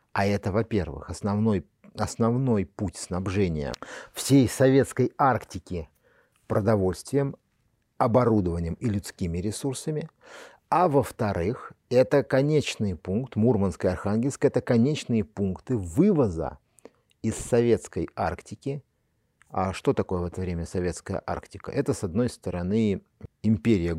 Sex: male